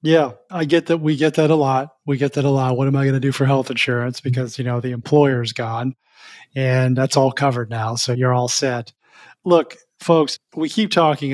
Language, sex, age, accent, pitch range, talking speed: English, male, 30-49, American, 125-140 Hz, 230 wpm